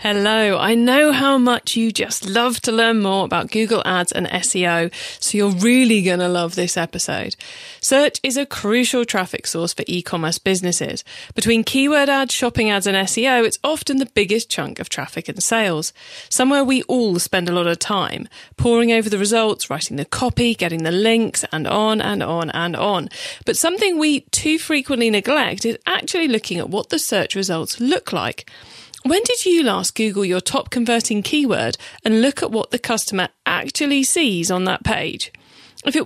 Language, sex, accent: English, female, British